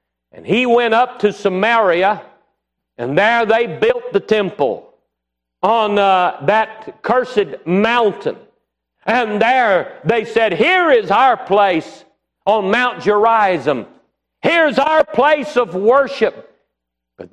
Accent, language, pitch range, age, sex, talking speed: American, English, 150-220 Hz, 50-69, male, 120 wpm